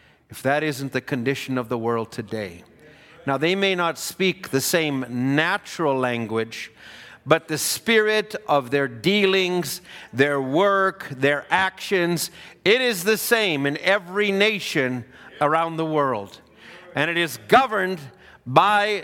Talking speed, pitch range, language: 135 wpm, 120-165 Hz, English